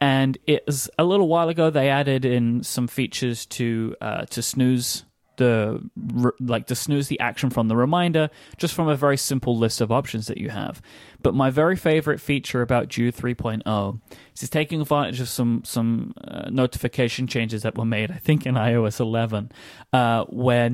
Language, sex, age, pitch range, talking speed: English, male, 20-39, 115-140 Hz, 185 wpm